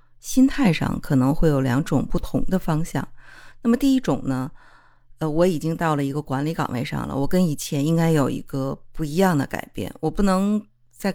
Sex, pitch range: female, 135-185 Hz